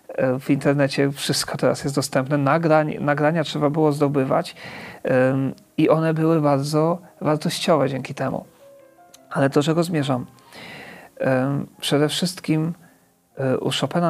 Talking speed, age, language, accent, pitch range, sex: 105 wpm, 40-59, Polish, native, 140-180 Hz, male